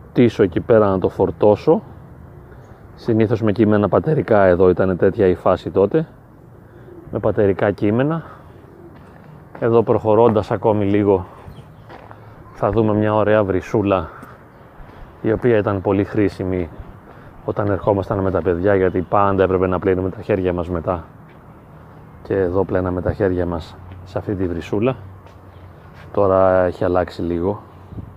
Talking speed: 130 wpm